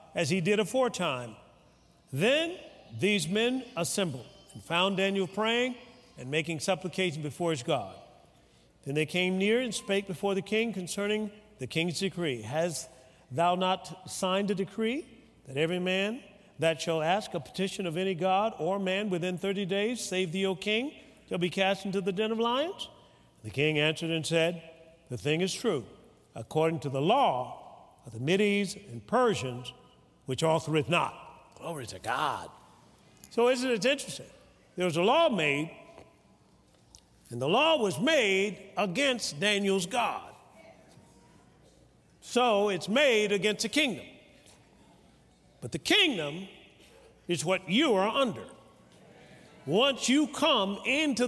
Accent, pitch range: American, 165-220 Hz